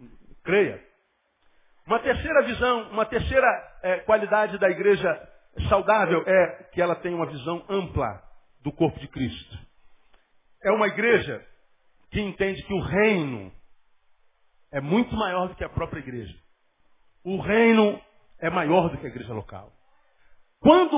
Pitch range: 175-255 Hz